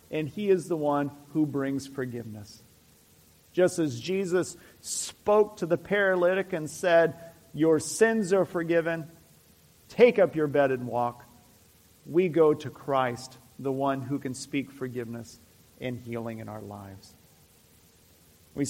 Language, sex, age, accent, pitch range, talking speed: English, male, 50-69, American, 135-195 Hz, 140 wpm